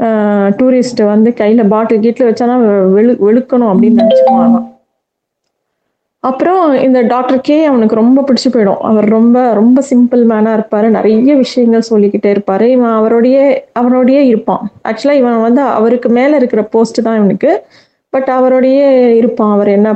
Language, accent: Tamil, native